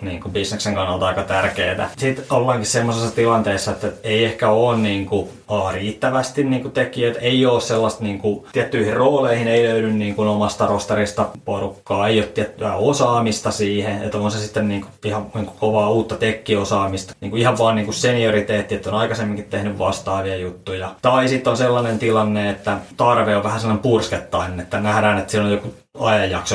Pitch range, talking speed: 95-115 Hz, 180 wpm